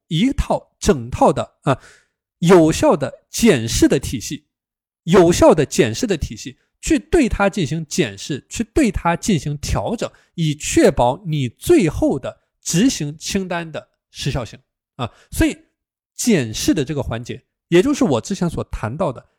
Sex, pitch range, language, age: male, 130-205 Hz, Chinese, 20-39